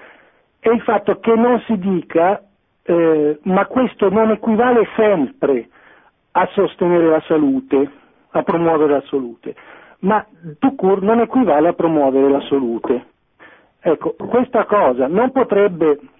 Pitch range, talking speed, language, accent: 165-210 Hz, 125 wpm, Italian, native